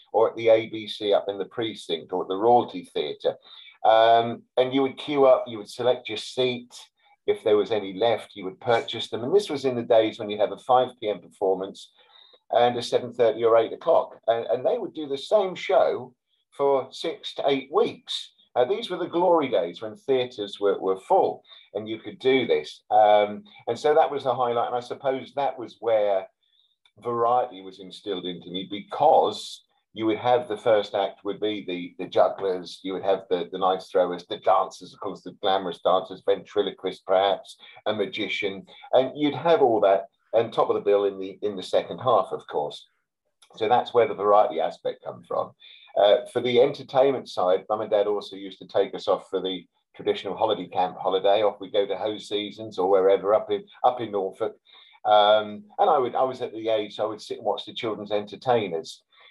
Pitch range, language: 105-140 Hz, English